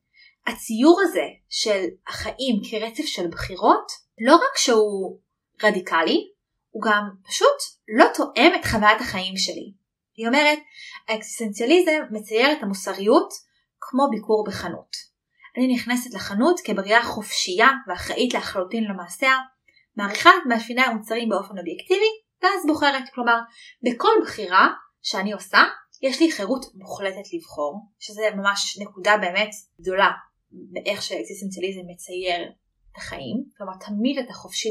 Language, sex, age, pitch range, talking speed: Hebrew, female, 20-39, 200-275 Hz, 120 wpm